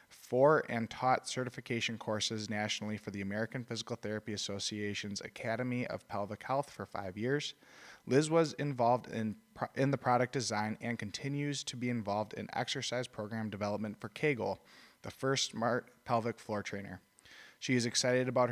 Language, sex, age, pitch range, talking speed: English, male, 20-39, 105-125 Hz, 155 wpm